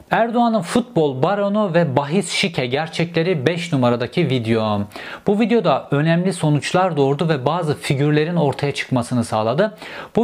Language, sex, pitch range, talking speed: Turkish, male, 135-185 Hz, 130 wpm